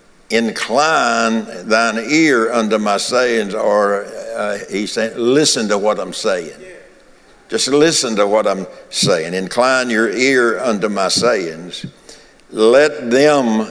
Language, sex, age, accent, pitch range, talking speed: English, male, 60-79, American, 110-135 Hz, 125 wpm